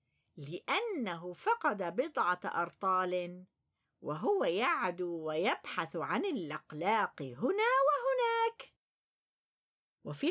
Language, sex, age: Arabic, female, 50-69